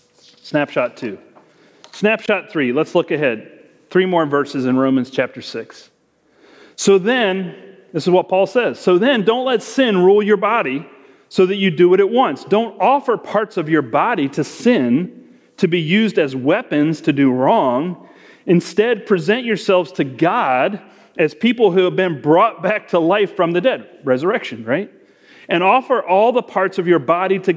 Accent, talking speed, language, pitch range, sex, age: American, 175 wpm, English, 145-210 Hz, male, 40-59